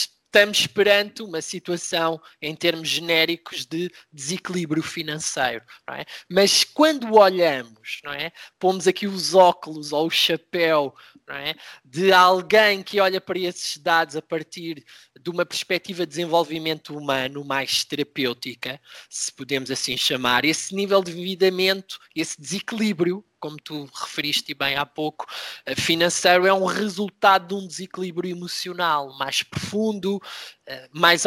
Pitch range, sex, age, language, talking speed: 150-185 Hz, male, 20-39, Portuguese, 135 wpm